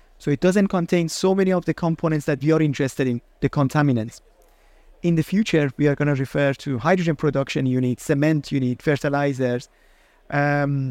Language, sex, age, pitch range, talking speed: English, male, 30-49, 145-180 Hz, 175 wpm